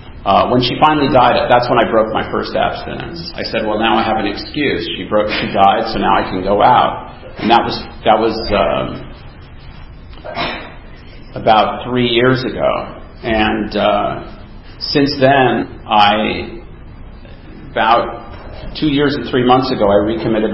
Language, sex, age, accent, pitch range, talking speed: English, male, 40-59, American, 100-120 Hz, 160 wpm